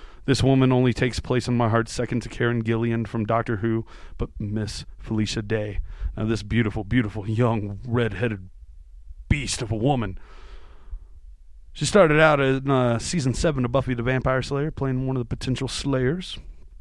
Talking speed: 170 wpm